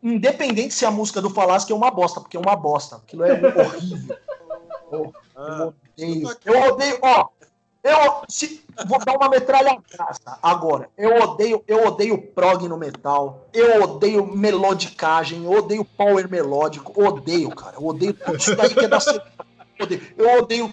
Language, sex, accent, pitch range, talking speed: Portuguese, male, Brazilian, 175-230 Hz, 170 wpm